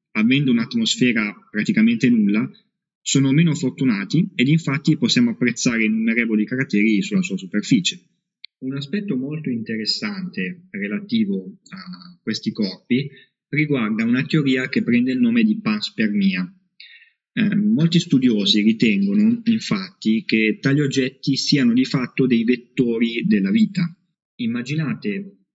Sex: male